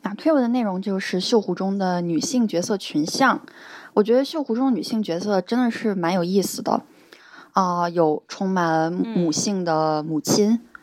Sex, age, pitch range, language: female, 20-39, 180-230 Hz, Chinese